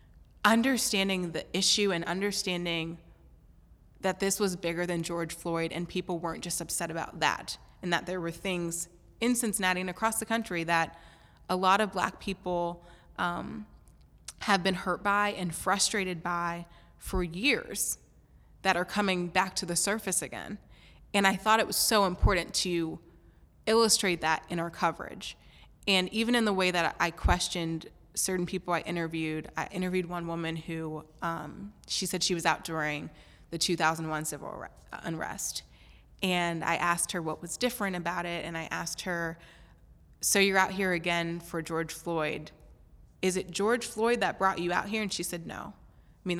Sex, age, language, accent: female, 20-39, English, American